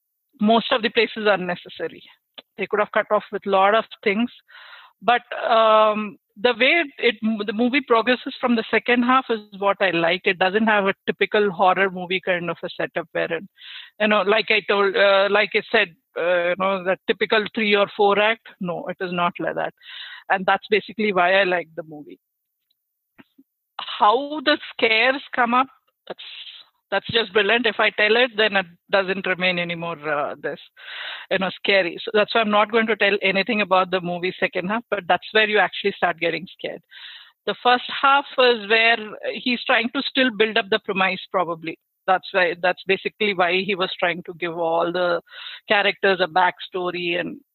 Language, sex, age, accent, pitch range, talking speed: English, female, 50-69, Indian, 185-235 Hz, 200 wpm